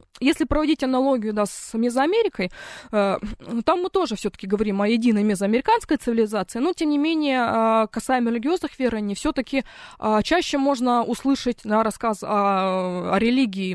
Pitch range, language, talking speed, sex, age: 215-295 Hz, Russian, 120 wpm, female, 20-39